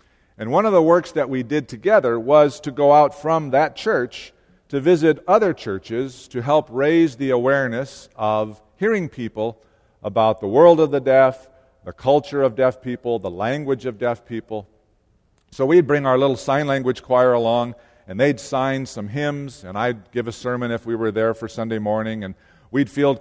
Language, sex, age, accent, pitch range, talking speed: English, male, 50-69, American, 115-155 Hz, 190 wpm